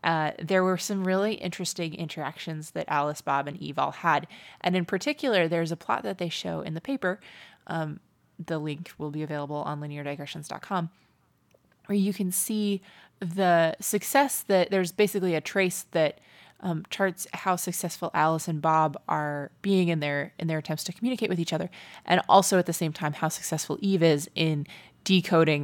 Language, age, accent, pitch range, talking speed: English, 20-39, American, 155-185 Hz, 180 wpm